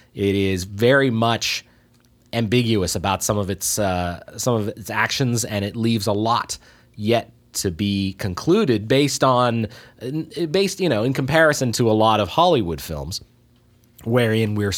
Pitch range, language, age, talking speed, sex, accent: 105-135 Hz, English, 30-49, 155 wpm, male, American